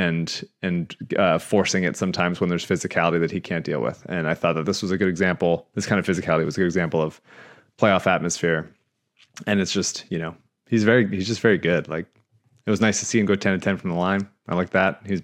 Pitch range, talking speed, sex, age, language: 90-105 Hz, 250 wpm, male, 20-39, English